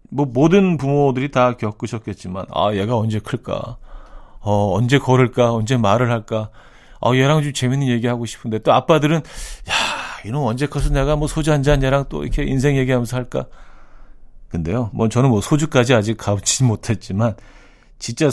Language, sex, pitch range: Korean, male, 105-145 Hz